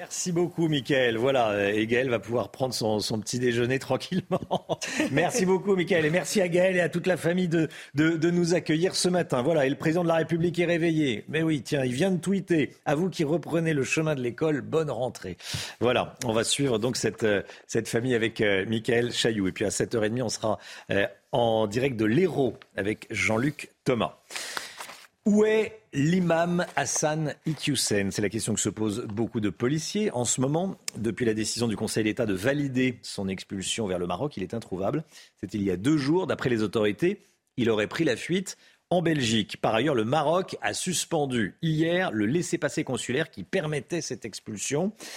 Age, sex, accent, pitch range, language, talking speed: 40-59, male, French, 115-170 Hz, French, 195 wpm